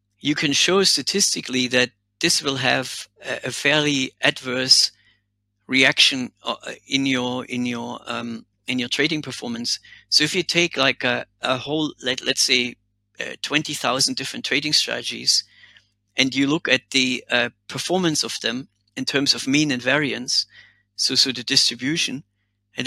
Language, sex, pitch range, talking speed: English, male, 110-140 Hz, 145 wpm